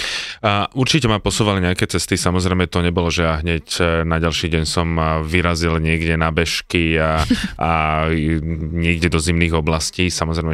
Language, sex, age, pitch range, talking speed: Slovak, male, 30-49, 80-90 Hz, 150 wpm